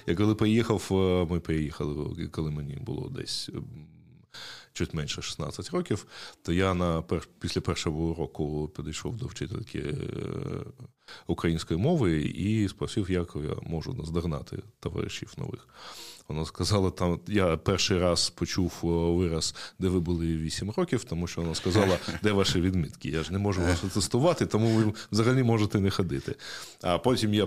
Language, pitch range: Ukrainian, 80-105 Hz